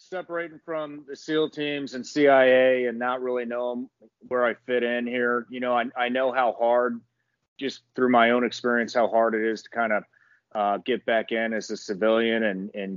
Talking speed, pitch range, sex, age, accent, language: 205 wpm, 105-120 Hz, male, 30-49, American, English